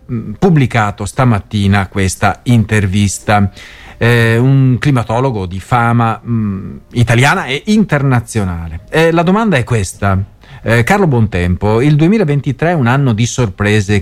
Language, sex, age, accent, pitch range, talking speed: Italian, male, 40-59, native, 100-140 Hz, 120 wpm